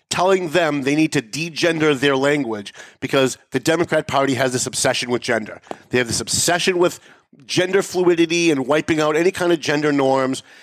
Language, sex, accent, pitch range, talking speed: English, male, American, 130-180 Hz, 180 wpm